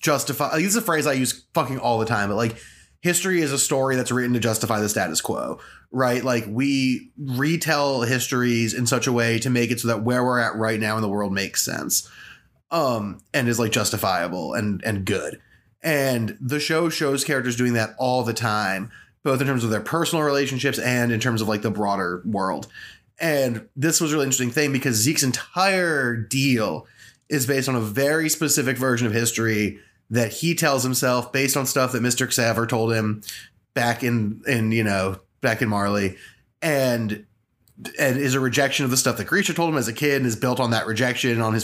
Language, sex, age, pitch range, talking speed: English, male, 20-39, 115-140 Hz, 210 wpm